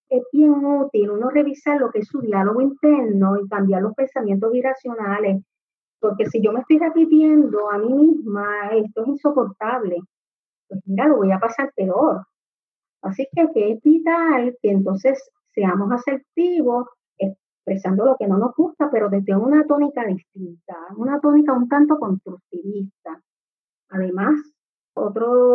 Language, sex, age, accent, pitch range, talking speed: English, female, 30-49, American, 200-270 Hz, 145 wpm